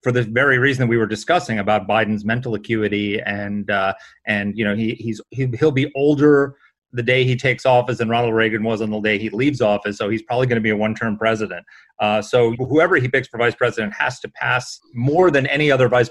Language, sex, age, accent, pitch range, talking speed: English, male, 30-49, American, 110-130 Hz, 230 wpm